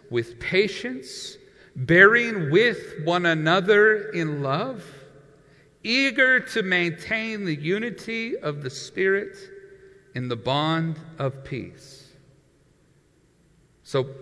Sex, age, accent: male, 40-59, American